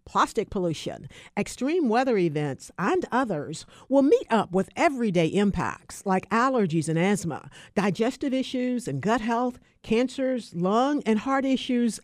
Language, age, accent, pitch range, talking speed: English, 50-69, American, 170-255 Hz, 135 wpm